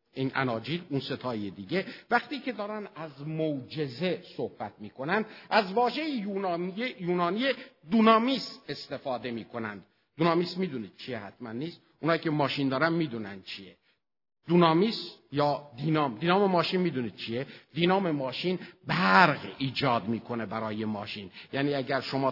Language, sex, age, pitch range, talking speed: Persian, male, 50-69, 135-215 Hz, 125 wpm